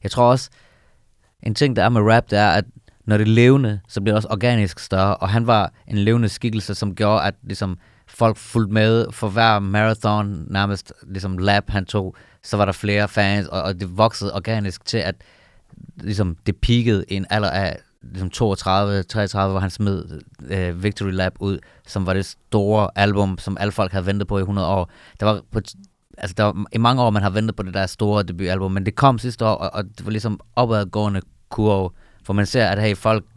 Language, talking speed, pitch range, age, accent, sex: Danish, 215 wpm, 95-110 Hz, 30-49, native, male